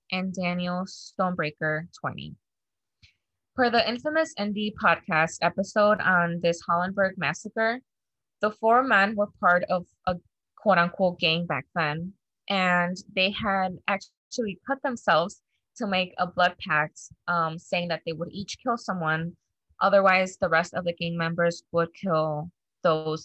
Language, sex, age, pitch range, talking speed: English, female, 20-39, 170-200 Hz, 140 wpm